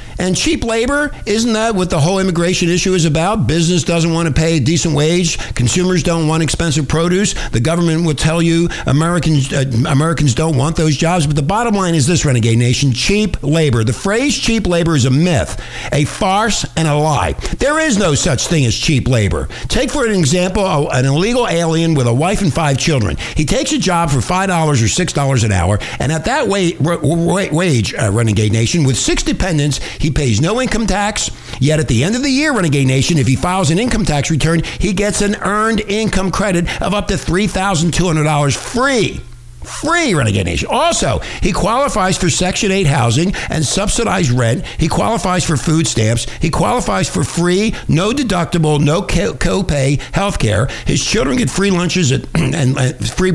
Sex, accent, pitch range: male, American, 135-185 Hz